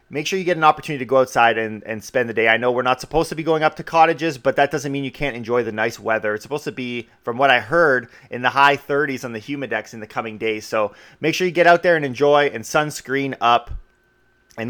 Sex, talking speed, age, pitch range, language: male, 275 wpm, 30-49, 125-170 Hz, English